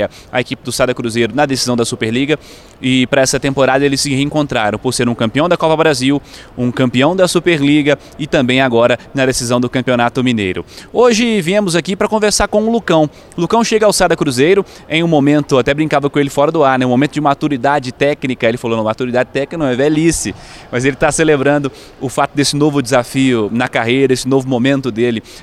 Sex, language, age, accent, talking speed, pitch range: male, Portuguese, 20-39, Brazilian, 205 wpm, 125-155 Hz